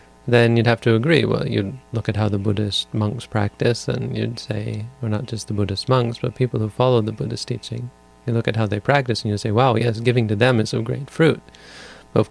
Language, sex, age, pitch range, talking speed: English, male, 30-49, 100-125 Hz, 250 wpm